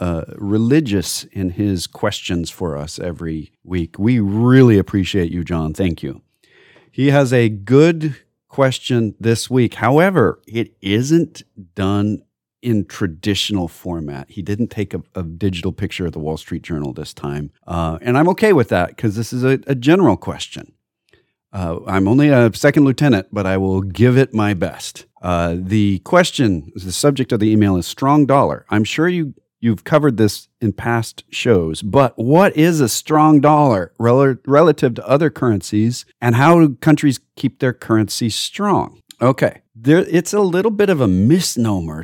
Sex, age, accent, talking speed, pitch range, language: male, 40-59, American, 165 wpm, 95-135 Hz, English